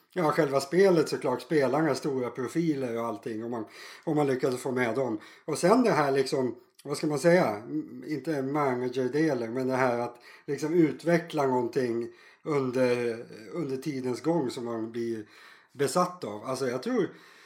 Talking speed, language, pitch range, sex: 170 wpm, Swedish, 130-175 Hz, male